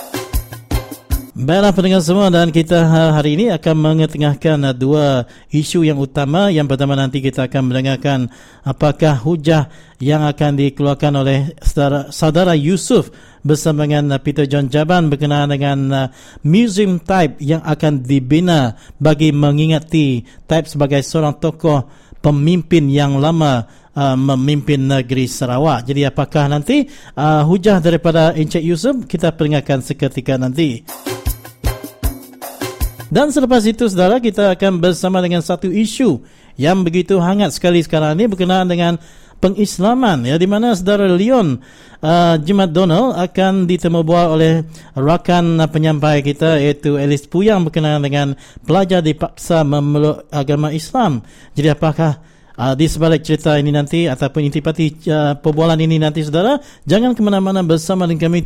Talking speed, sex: 130 wpm, male